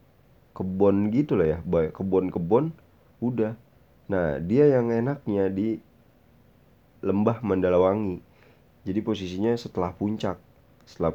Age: 30-49